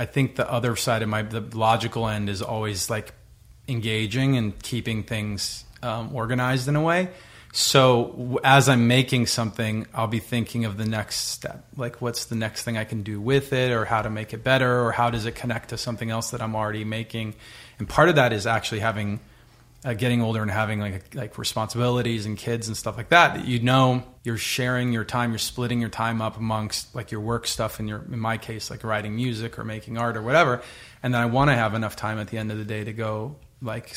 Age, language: 30-49, English